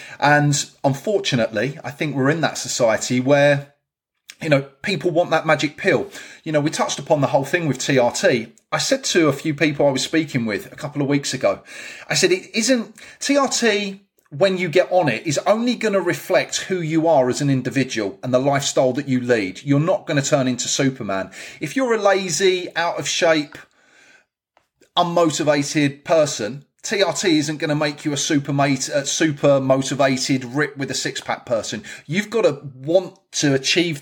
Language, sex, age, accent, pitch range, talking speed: English, male, 30-49, British, 130-170 Hz, 185 wpm